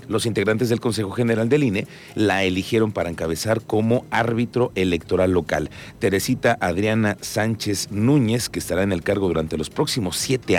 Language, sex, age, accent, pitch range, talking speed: Spanish, male, 40-59, Mexican, 90-115 Hz, 160 wpm